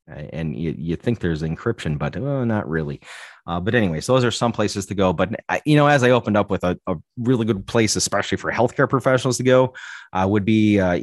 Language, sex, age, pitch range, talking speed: English, male, 30-49, 90-115 Hz, 240 wpm